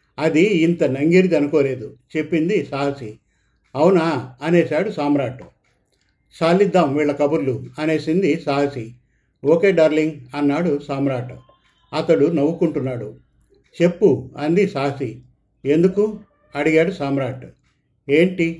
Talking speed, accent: 85 wpm, native